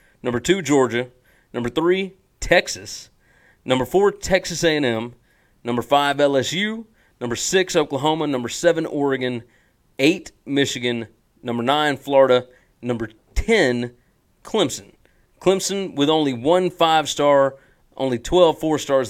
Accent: American